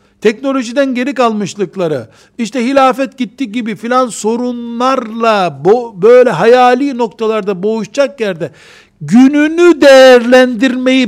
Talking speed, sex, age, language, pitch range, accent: 90 wpm, male, 60-79, Turkish, 170-255 Hz, native